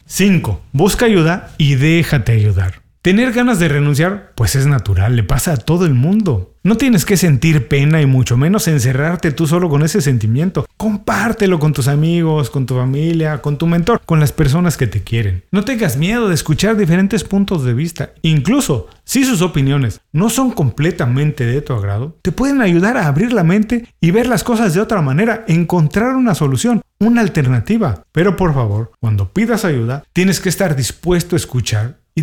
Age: 40-59